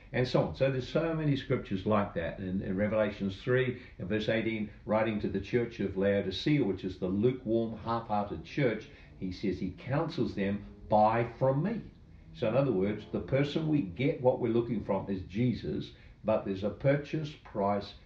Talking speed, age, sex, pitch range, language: 185 wpm, 60-79, male, 100-150 Hz, English